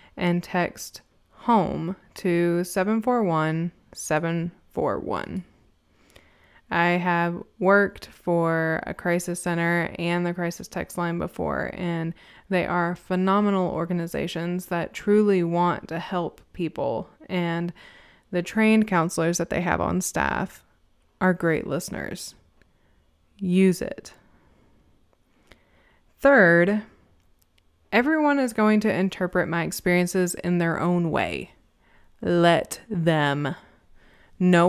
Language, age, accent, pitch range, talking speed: English, 20-39, American, 170-215 Hz, 100 wpm